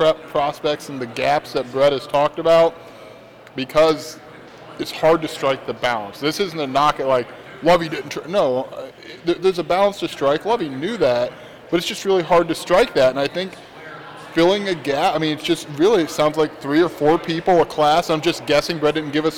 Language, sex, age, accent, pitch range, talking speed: English, male, 20-39, American, 145-170 Hz, 210 wpm